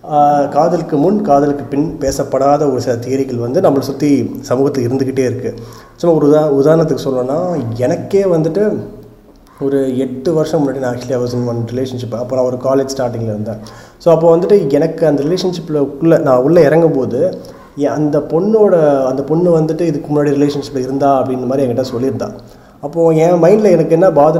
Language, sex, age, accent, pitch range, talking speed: Tamil, male, 30-49, native, 130-155 Hz, 155 wpm